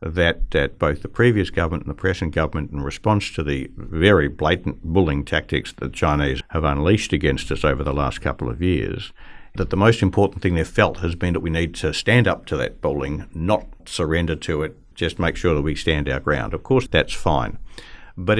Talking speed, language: 210 wpm, English